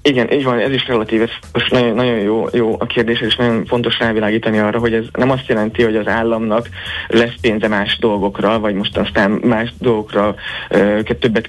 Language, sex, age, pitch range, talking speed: Hungarian, male, 30-49, 105-120 Hz, 200 wpm